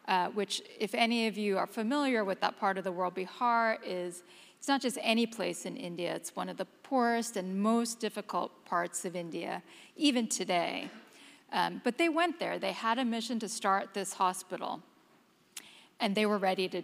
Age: 40-59